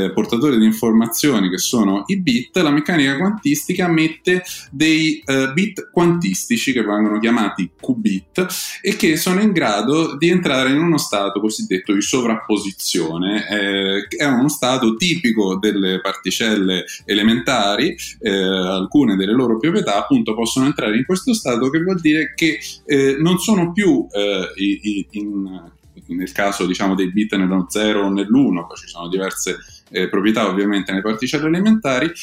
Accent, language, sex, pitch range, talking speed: native, Italian, male, 105-170 Hz, 155 wpm